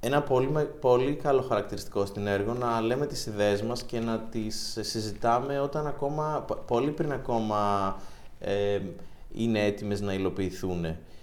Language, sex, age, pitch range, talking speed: Greek, male, 30-49, 110-150 Hz, 140 wpm